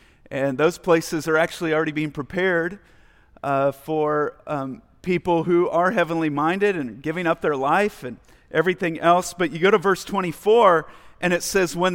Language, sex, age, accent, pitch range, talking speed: English, male, 40-59, American, 155-200 Hz, 170 wpm